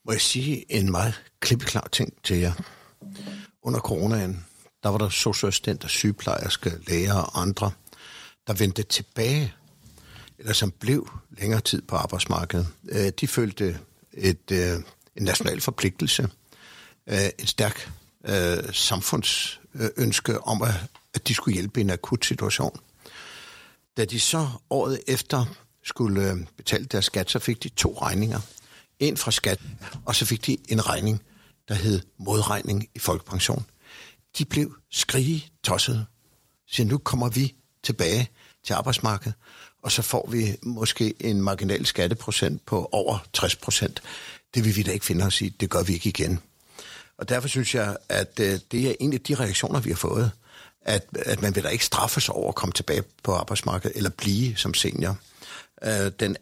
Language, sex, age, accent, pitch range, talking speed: Danish, male, 60-79, native, 95-125 Hz, 150 wpm